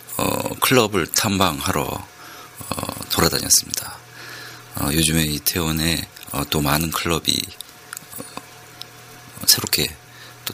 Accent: native